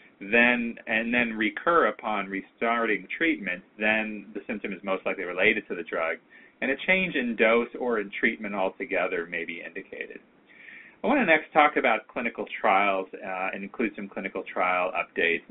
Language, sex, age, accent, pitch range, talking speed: English, male, 30-49, American, 95-115 Hz, 170 wpm